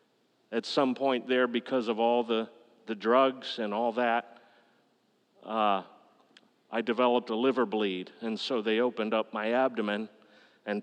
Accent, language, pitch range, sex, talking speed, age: American, English, 105-120 Hz, male, 150 wpm, 40-59